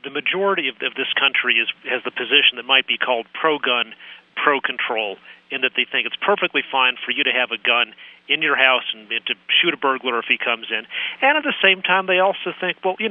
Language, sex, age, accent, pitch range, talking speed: English, male, 40-59, American, 130-165 Hz, 240 wpm